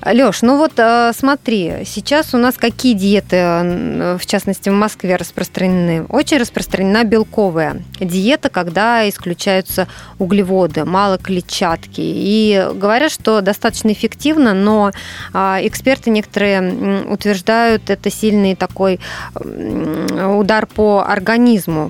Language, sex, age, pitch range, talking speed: Russian, female, 20-39, 190-235 Hz, 105 wpm